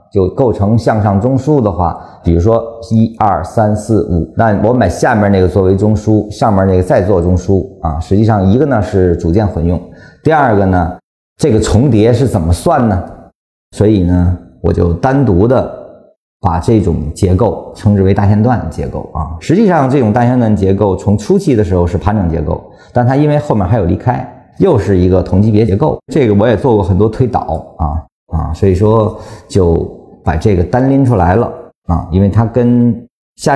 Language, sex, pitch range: Chinese, male, 90-115 Hz